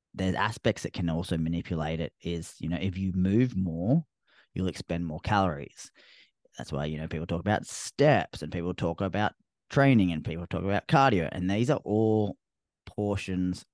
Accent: Australian